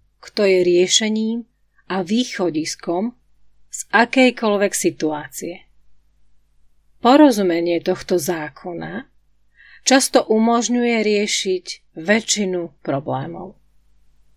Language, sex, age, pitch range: Slovak, female, 30-49, 165-220 Hz